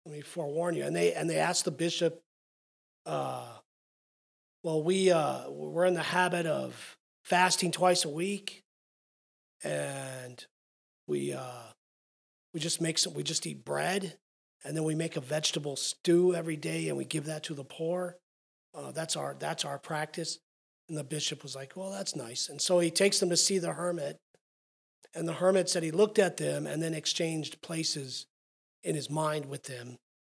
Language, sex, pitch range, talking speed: English, male, 135-175 Hz, 180 wpm